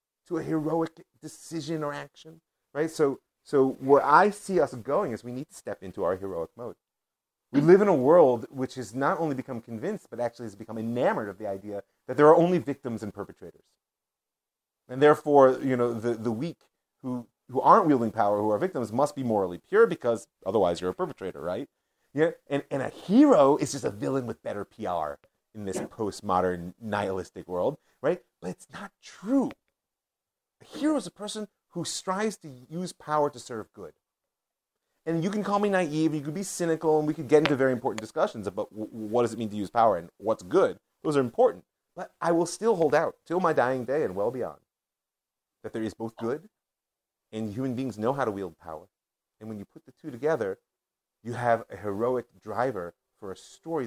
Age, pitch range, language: 30-49, 115-160 Hz, English